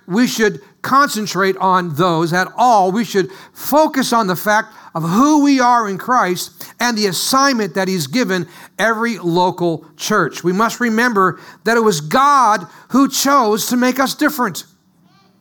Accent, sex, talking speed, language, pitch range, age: American, male, 160 wpm, English, 185-250 Hz, 50-69